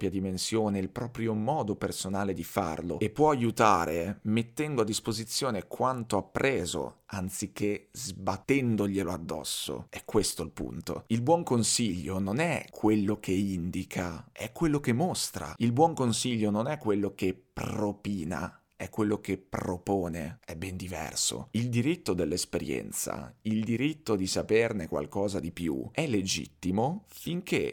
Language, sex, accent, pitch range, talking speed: Italian, male, native, 95-120 Hz, 135 wpm